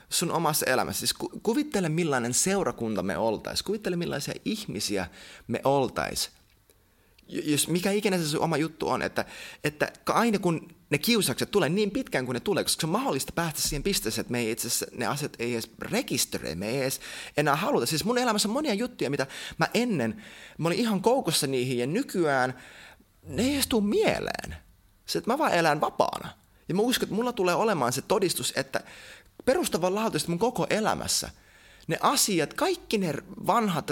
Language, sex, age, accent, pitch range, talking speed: Finnish, male, 20-39, native, 130-200 Hz, 180 wpm